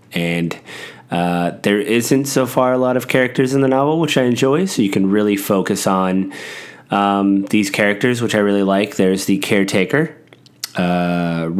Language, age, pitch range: English, 30-49, 90-110 Hz